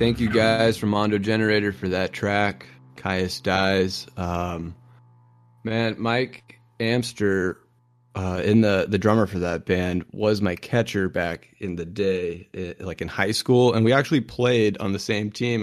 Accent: American